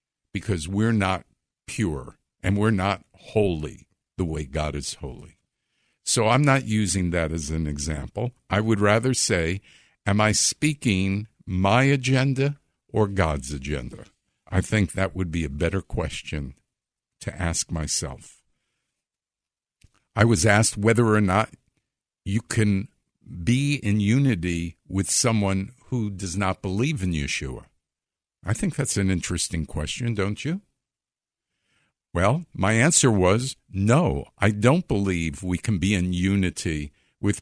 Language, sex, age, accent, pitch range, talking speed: English, male, 60-79, American, 85-115 Hz, 135 wpm